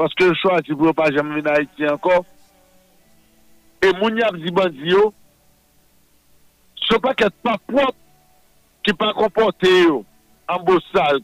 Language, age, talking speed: French, 50-69, 170 wpm